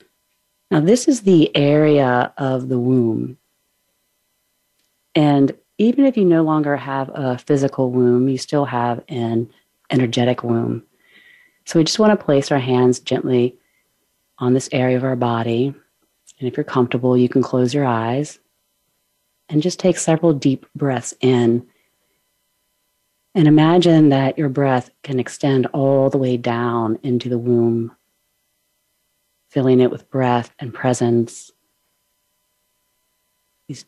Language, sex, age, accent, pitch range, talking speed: English, female, 40-59, American, 120-145 Hz, 135 wpm